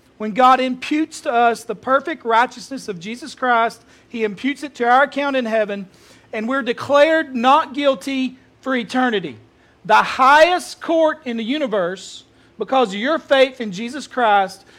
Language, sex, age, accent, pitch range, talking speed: English, male, 40-59, American, 230-275 Hz, 160 wpm